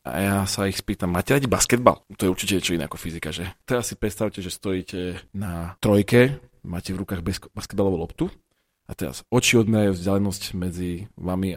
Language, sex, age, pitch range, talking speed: Slovak, male, 40-59, 95-120 Hz, 175 wpm